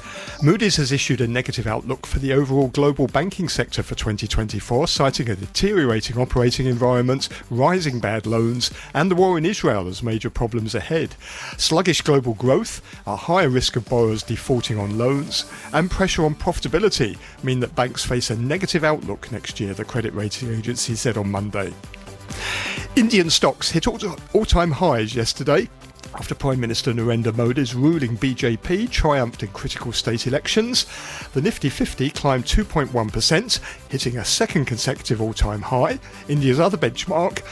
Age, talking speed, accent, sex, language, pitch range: 50-69, 150 wpm, British, male, English, 110-150 Hz